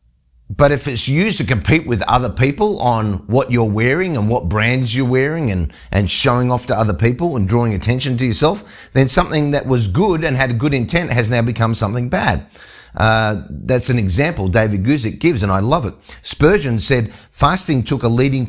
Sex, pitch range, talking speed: male, 95-135 Hz, 200 wpm